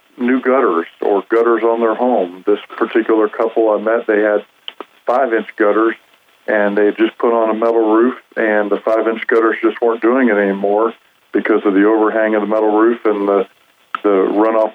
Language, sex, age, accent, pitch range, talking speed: English, male, 50-69, American, 105-115 Hz, 190 wpm